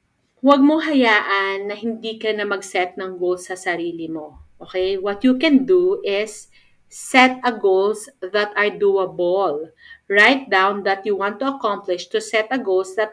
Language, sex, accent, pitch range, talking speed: Filipino, female, native, 195-270 Hz, 170 wpm